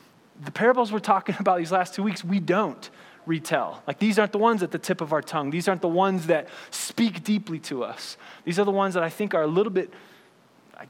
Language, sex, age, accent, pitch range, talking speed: English, male, 20-39, American, 170-215 Hz, 240 wpm